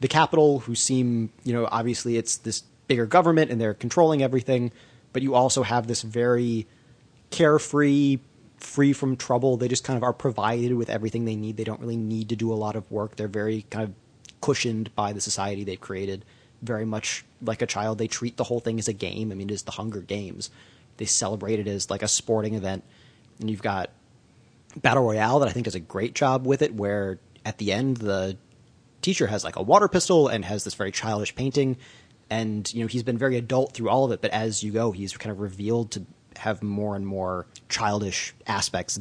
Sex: male